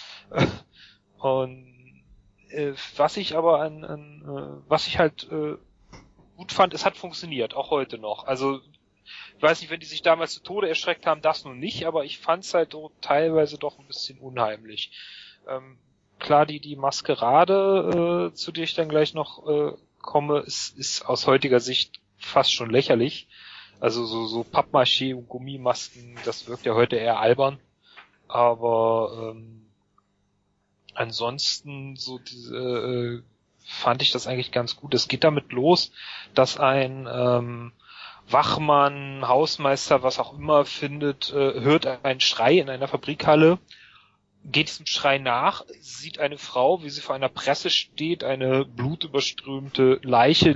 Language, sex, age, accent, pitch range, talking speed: German, male, 30-49, German, 125-150 Hz, 150 wpm